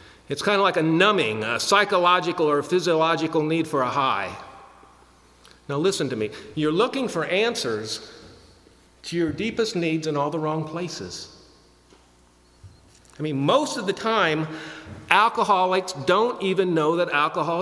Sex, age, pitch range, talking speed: male, 50-69, 140-205 Hz, 145 wpm